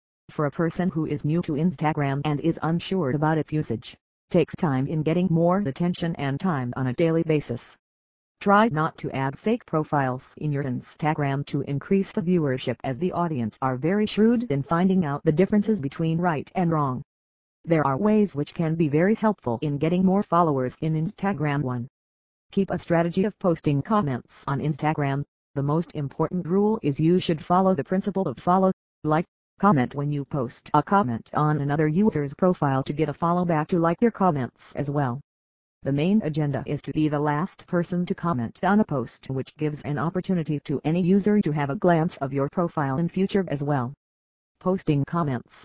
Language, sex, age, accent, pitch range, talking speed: English, female, 50-69, American, 140-180 Hz, 190 wpm